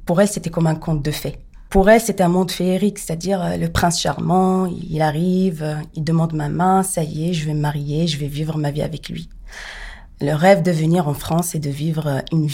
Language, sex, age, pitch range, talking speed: French, female, 40-59, 145-180 Hz, 230 wpm